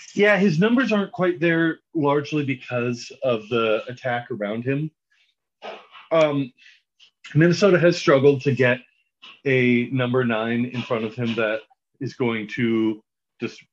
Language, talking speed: English, 135 wpm